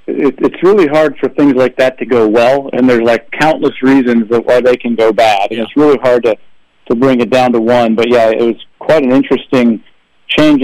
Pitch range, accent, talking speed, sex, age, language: 120-135 Hz, American, 225 wpm, male, 40-59, English